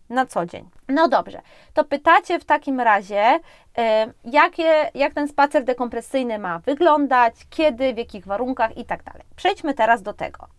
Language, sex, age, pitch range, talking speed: Polish, female, 20-39, 230-290 Hz, 155 wpm